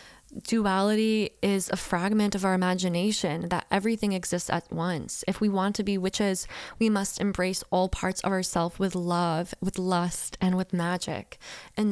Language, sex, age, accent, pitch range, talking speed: English, female, 10-29, American, 180-215 Hz, 165 wpm